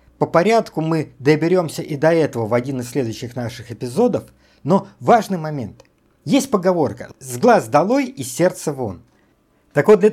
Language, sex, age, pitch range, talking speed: Russian, male, 50-69, 130-195 Hz, 160 wpm